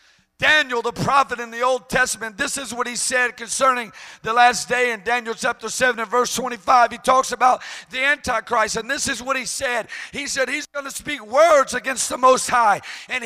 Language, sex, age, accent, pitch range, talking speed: English, male, 50-69, American, 260-325 Hz, 210 wpm